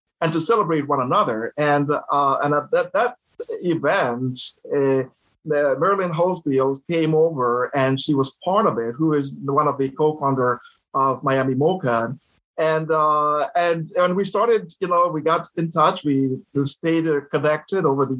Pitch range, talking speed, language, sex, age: 135-165 Hz, 160 wpm, English, male, 50-69